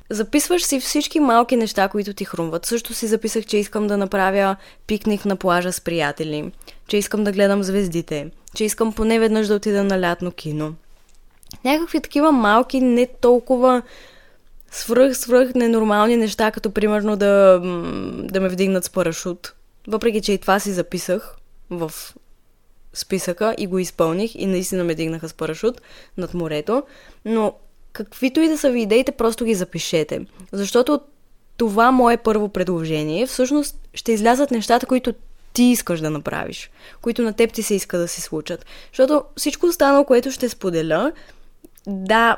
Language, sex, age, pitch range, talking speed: Bulgarian, female, 20-39, 190-245 Hz, 155 wpm